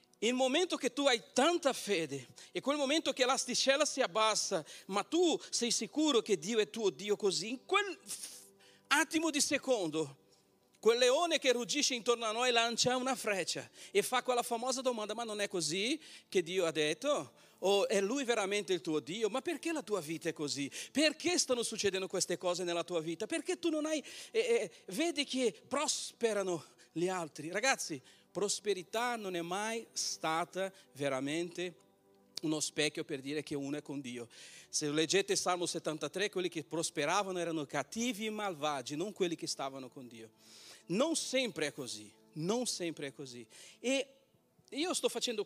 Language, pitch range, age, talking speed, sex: Italian, 165-260 Hz, 40-59, 175 wpm, male